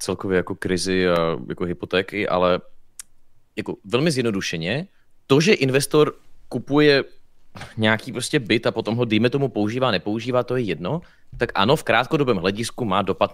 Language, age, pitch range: Czech, 30-49, 100-130 Hz